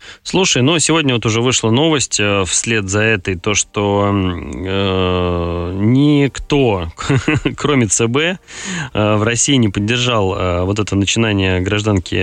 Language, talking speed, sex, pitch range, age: Russian, 135 wpm, male, 95-120 Hz, 20-39